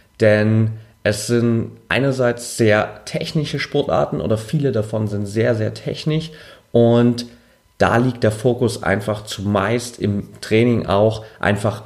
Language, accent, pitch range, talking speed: German, German, 100-115 Hz, 125 wpm